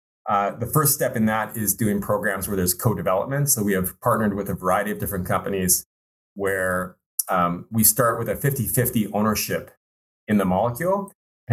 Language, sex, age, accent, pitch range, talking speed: English, male, 30-49, American, 95-120 Hz, 180 wpm